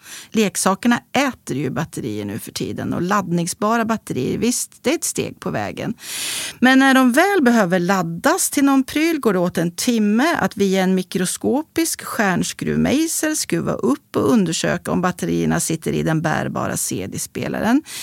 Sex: female